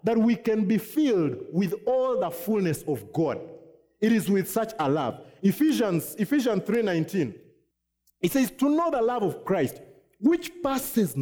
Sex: male